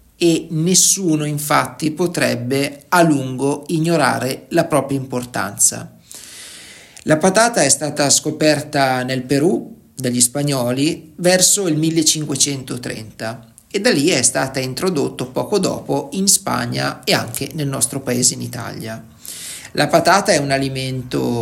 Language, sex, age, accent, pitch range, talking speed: Italian, male, 40-59, native, 125-170 Hz, 125 wpm